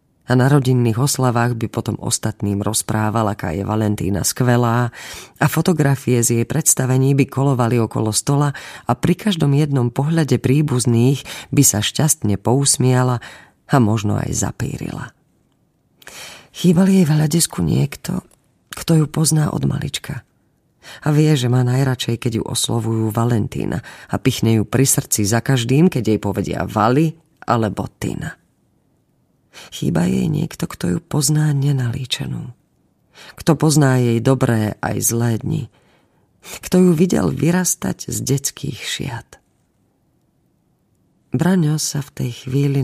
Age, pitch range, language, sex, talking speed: 30-49, 115-145 Hz, Slovak, female, 125 wpm